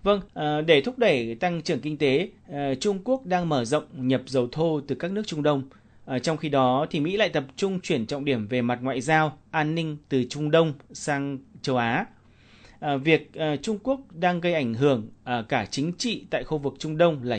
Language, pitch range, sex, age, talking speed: Vietnamese, 135-180 Hz, male, 30-49, 205 wpm